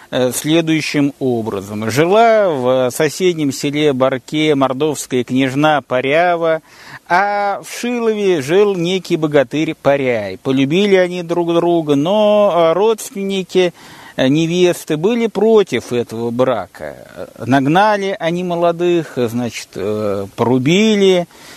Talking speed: 90 wpm